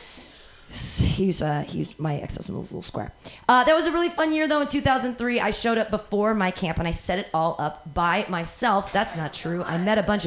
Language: English